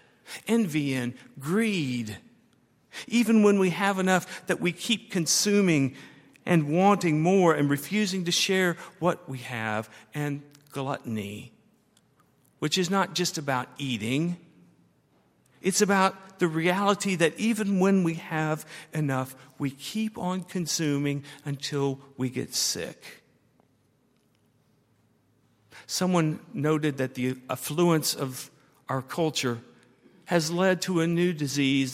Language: English